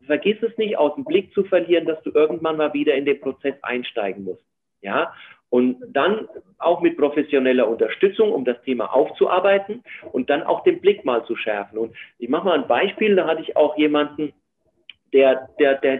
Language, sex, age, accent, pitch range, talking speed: German, male, 40-59, German, 135-195 Hz, 190 wpm